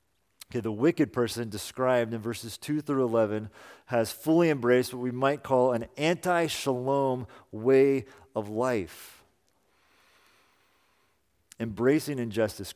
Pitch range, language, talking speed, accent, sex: 110-140 Hz, English, 115 wpm, American, male